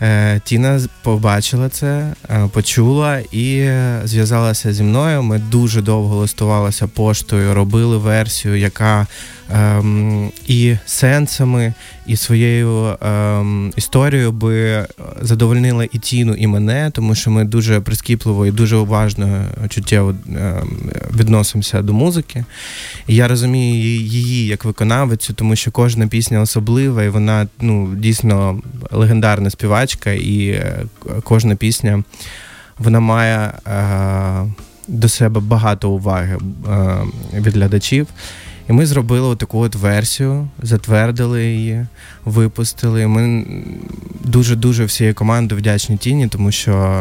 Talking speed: 115 wpm